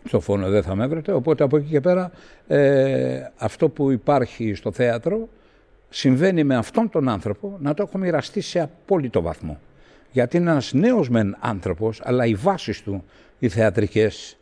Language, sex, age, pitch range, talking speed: Greek, male, 60-79, 105-135 Hz, 170 wpm